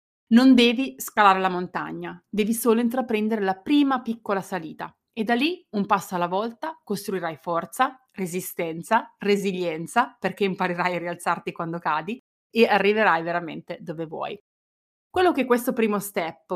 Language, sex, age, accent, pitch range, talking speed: Italian, female, 30-49, native, 185-240 Hz, 140 wpm